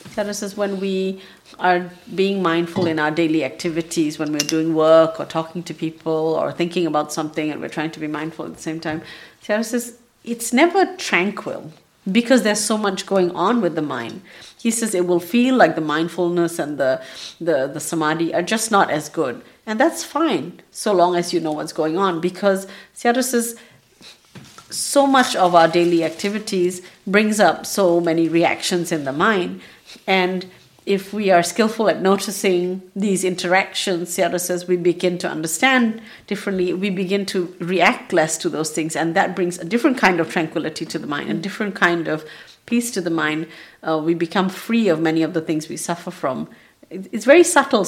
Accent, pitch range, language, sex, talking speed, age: Indian, 160-200 Hz, English, female, 190 wpm, 50-69